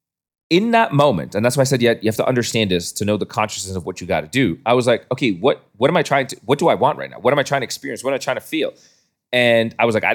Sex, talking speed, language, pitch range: male, 345 wpm, English, 105-135 Hz